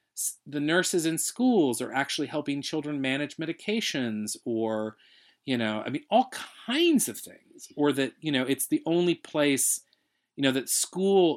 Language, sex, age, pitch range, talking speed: English, male, 40-59, 115-160 Hz, 165 wpm